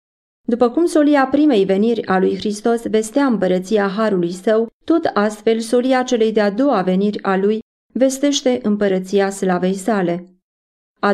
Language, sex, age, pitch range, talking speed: Romanian, female, 20-39, 190-230 Hz, 140 wpm